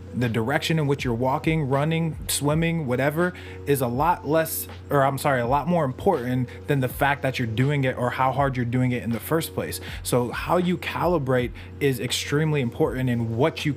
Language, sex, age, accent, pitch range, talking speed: English, male, 20-39, American, 120-155 Hz, 205 wpm